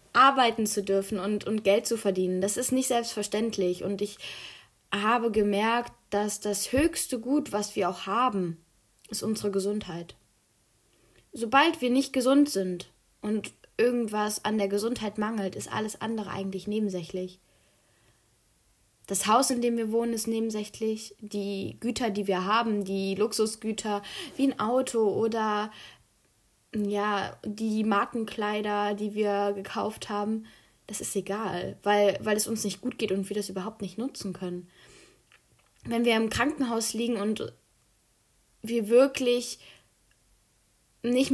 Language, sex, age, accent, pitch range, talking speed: German, female, 10-29, German, 195-230 Hz, 140 wpm